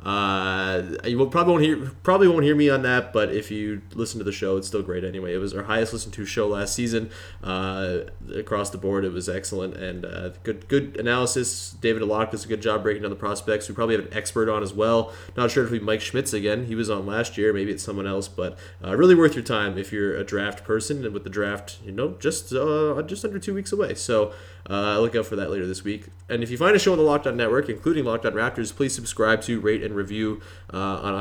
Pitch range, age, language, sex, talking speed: 100-130 Hz, 20-39, English, male, 250 wpm